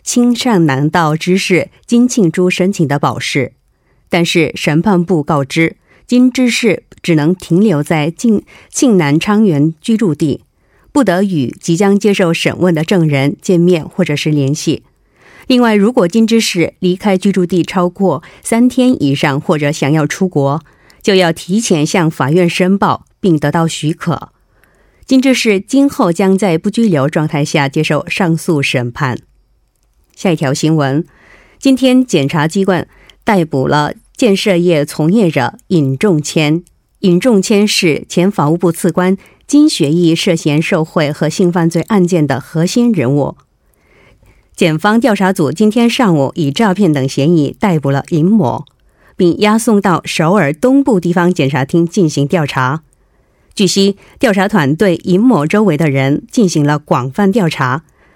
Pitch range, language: 155-205 Hz, Korean